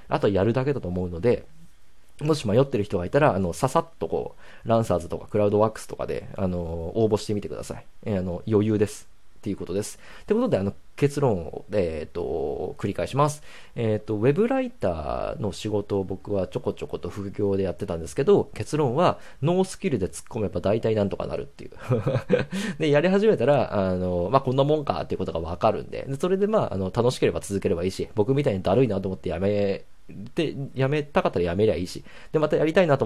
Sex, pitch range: male, 95-140 Hz